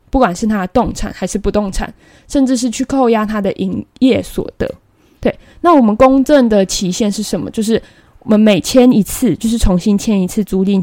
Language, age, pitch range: Chinese, 20-39, 190-240 Hz